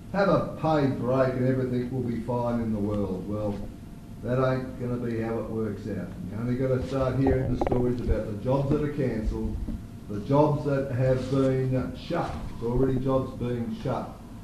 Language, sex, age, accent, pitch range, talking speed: English, male, 50-69, Australian, 115-140 Hz, 200 wpm